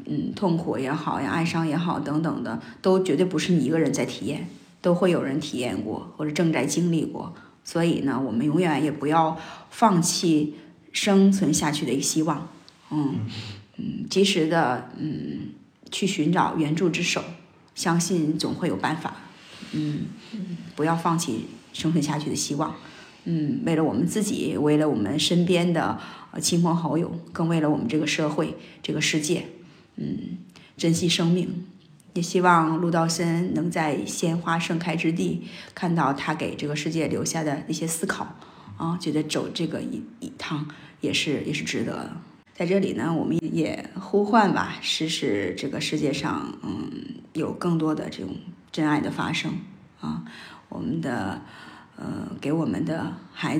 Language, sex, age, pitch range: Chinese, female, 20-39, 155-180 Hz